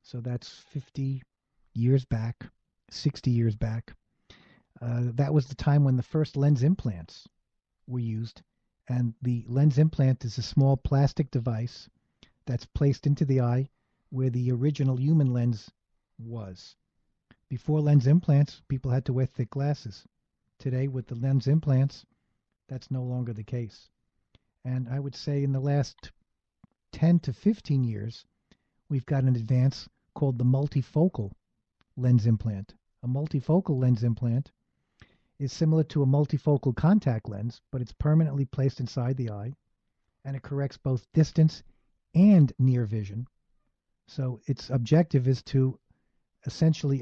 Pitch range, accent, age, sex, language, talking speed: 120-145 Hz, American, 50-69, male, English, 140 wpm